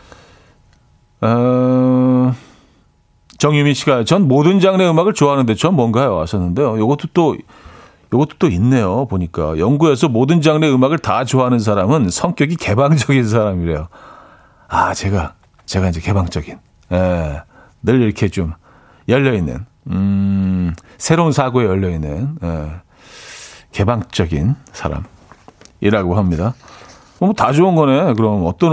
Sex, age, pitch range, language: male, 40-59, 90-145 Hz, Korean